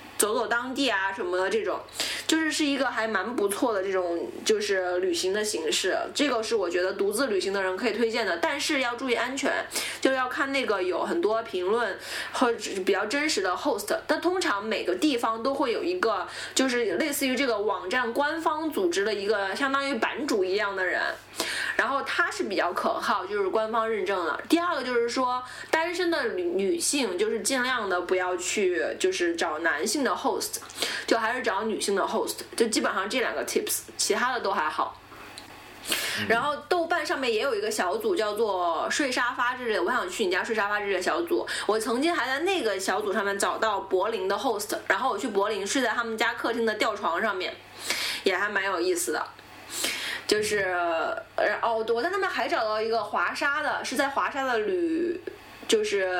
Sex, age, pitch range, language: female, 20-39, 220-350 Hz, Chinese